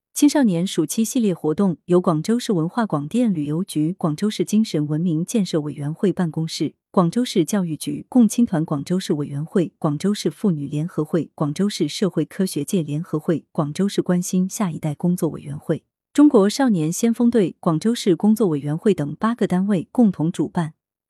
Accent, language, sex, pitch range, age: native, Chinese, female, 155-215 Hz, 30-49